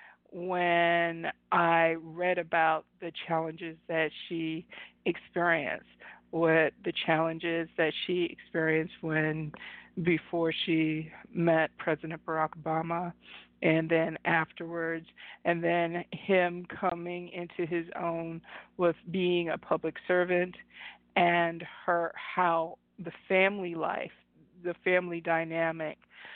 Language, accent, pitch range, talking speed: English, American, 165-175 Hz, 105 wpm